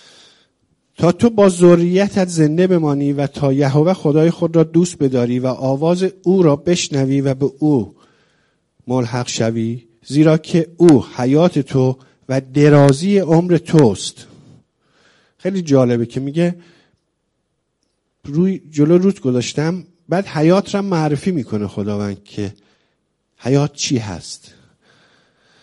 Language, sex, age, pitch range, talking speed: English, male, 50-69, 130-170 Hz, 120 wpm